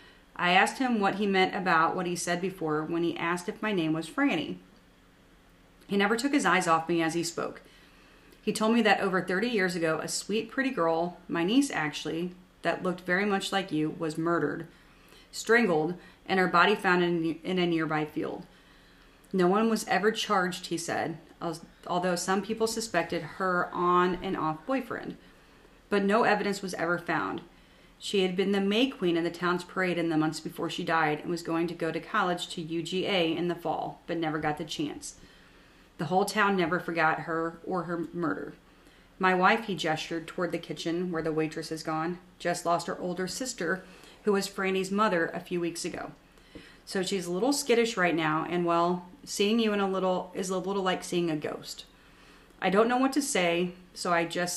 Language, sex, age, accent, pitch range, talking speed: English, female, 30-49, American, 165-195 Hz, 200 wpm